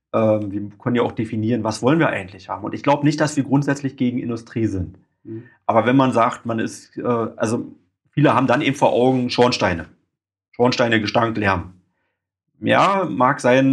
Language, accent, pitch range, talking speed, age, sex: German, German, 105-120 Hz, 180 wpm, 30-49, male